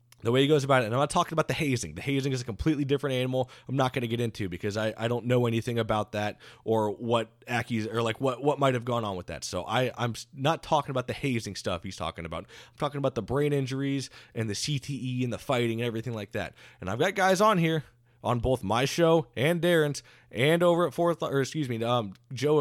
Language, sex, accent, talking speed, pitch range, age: English, male, American, 255 wpm, 115-145 Hz, 20-39